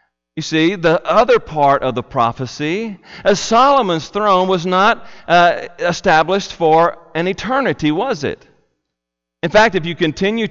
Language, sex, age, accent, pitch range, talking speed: English, male, 40-59, American, 140-185 Hz, 145 wpm